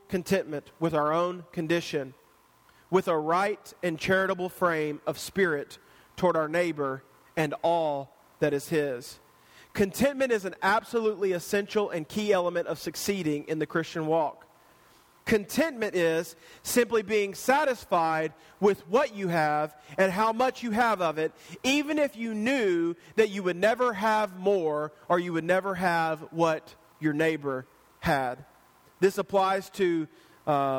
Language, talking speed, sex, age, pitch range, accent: English, 145 wpm, male, 40-59, 165-230 Hz, American